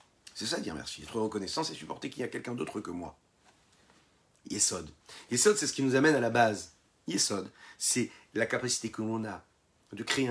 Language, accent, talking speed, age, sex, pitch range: French, French, 200 wpm, 40-59, male, 100-130 Hz